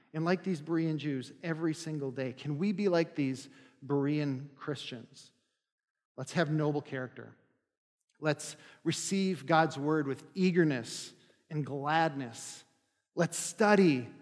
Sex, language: male, English